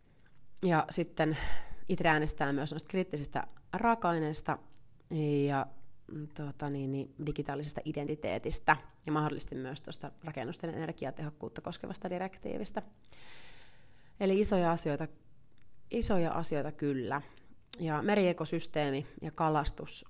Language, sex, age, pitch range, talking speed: Finnish, female, 30-49, 140-170 Hz, 85 wpm